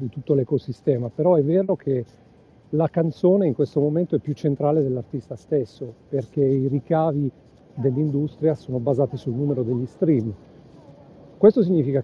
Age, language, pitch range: 40-59, Italian, 130-155 Hz